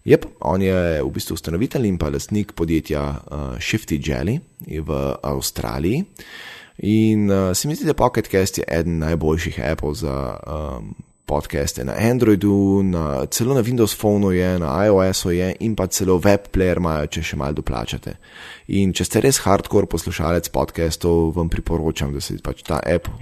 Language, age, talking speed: English, 20-39, 165 wpm